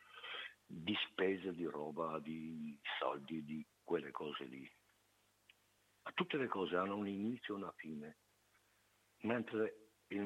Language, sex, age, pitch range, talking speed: Italian, male, 60-79, 95-110 Hz, 130 wpm